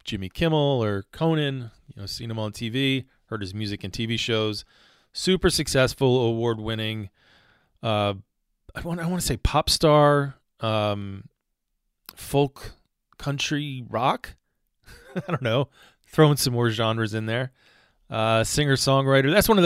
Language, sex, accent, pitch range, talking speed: English, male, American, 110-135 Hz, 155 wpm